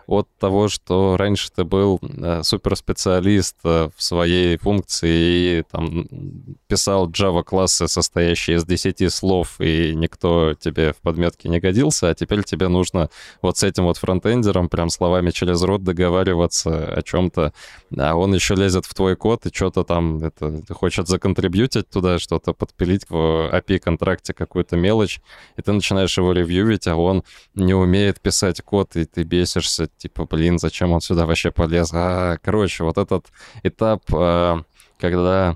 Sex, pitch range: male, 85-100 Hz